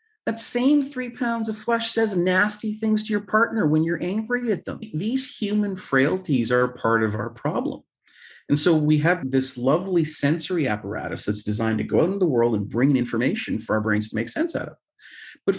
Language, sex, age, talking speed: English, male, 40-59, 210 wpm